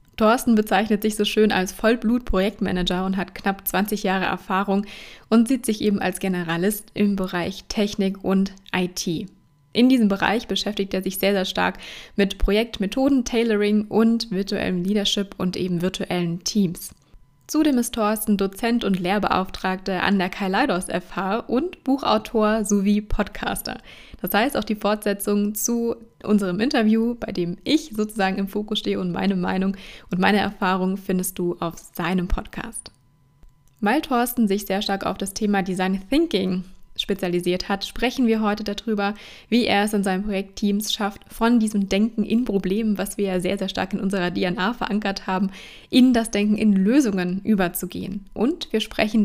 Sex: female